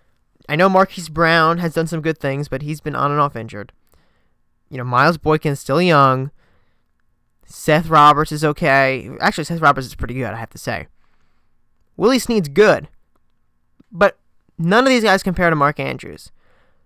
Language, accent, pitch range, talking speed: English, American, 145-180 Hz, 175 wpm